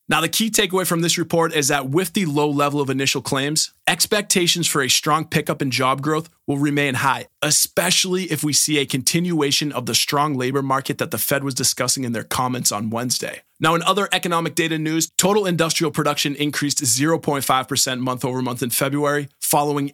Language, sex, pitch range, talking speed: English, male, 130-160 Hz, 195 wpm